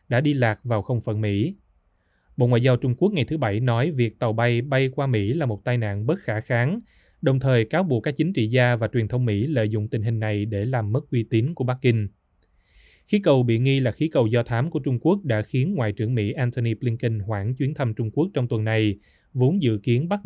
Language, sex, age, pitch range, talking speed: Vietnamese, male, 20-39, 110-135 Hz, 250 wpm